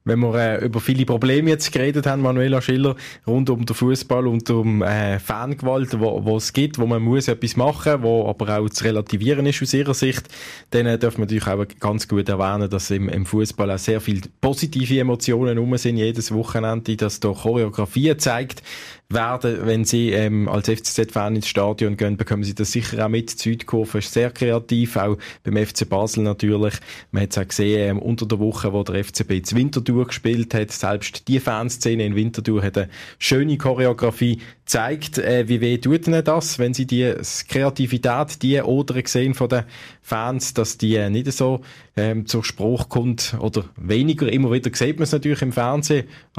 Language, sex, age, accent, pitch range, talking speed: German, male, 20-39, Austrian, 110-130 Hz, 190 wpm